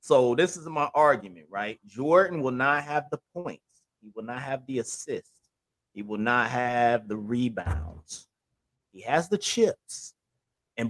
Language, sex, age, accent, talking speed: English, male, 30-49, American, 160 wpm